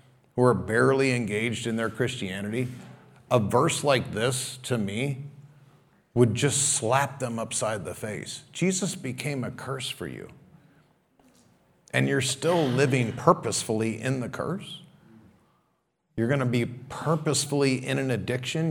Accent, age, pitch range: American, 40-59, 130-190 Hz